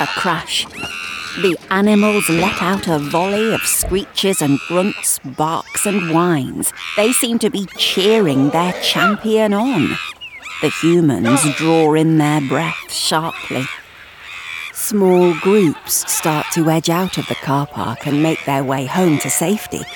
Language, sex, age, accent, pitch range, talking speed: English, female, 50-69, British, 155-205 Hz, 140 wpm